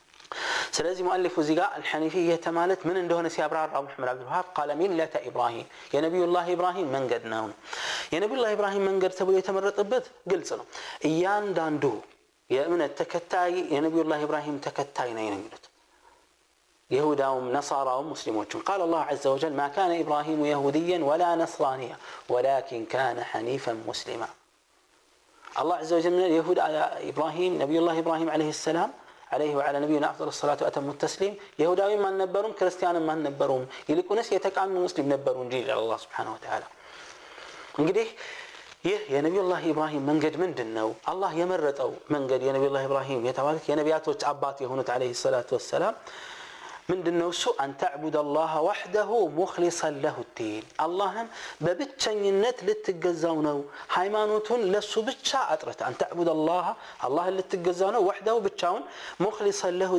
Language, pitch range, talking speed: Amharic, 150-200 Hz, 140 wpm